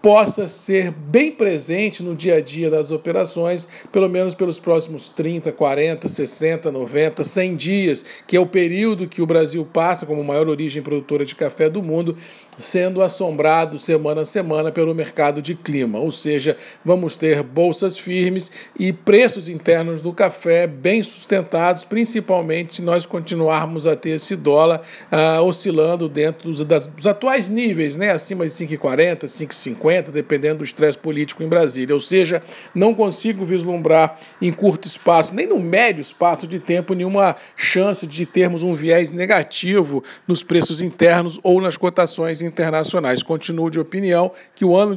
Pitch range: 160-185 Hz